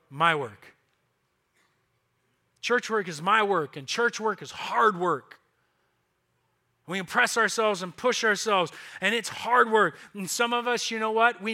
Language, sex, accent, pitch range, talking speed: English, male, American, 180-225 Hz, 160 wpm